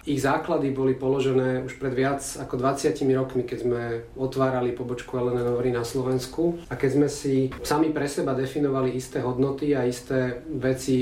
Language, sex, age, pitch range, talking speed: Slovak, male, 40-59, 130-140 Hz, 170 wpm